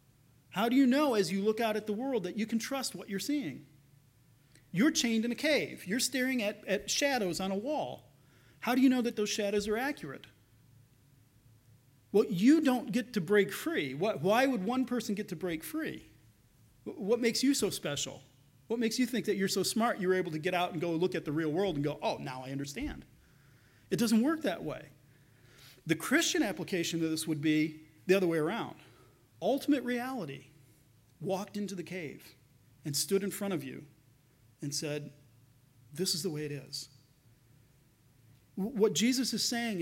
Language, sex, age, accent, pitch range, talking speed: English, male, 40-59, American, 140-220 Hz, 190 wpm